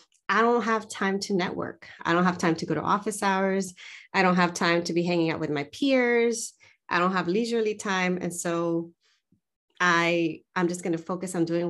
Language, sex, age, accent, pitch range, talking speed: English, female, 30-49, American, 165-215 Hz, 200 wpm